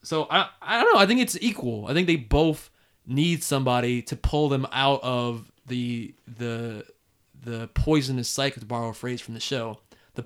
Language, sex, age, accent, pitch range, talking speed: English, male, 20-39, American, 120-170 Hz, 195 wpm